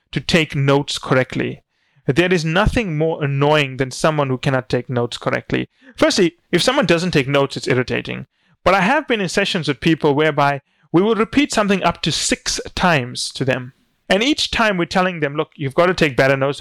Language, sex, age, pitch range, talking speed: English, male, 30-49, 135-185 Hz, 200 wpm